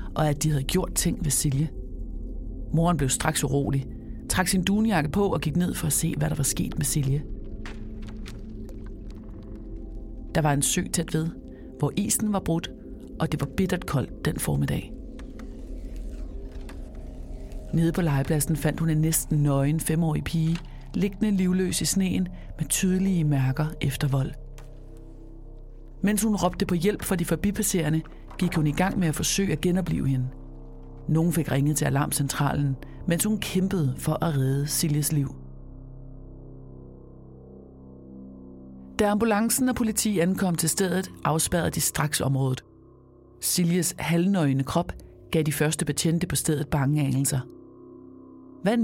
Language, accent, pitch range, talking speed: Danish, native, 110-170 Hz, 145 wpm